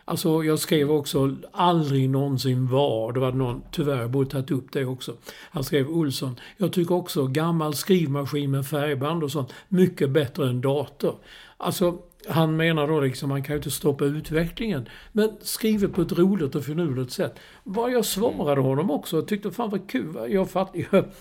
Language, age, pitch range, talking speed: Swedish, 60-79, 135-175 Hz, 185 wpm